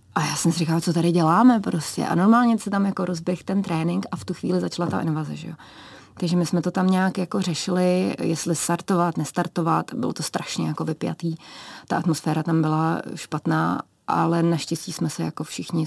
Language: Czech